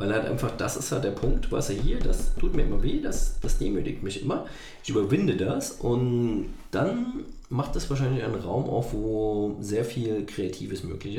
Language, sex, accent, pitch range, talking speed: German, male, German, 100-140 Hz, 200 wpm